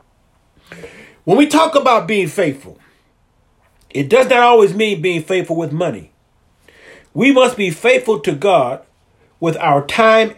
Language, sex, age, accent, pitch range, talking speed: English, male, 40-59, American, 155-230 Hz, 140 wpm